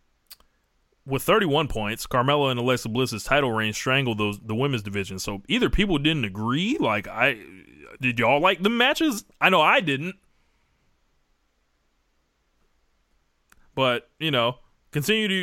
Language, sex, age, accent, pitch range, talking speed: English, male, 20-39, American, 115-180 Hz, 130 wpm